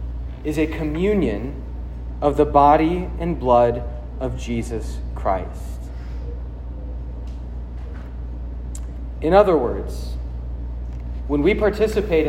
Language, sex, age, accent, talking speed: English, male, 30-49, American, 85 wpm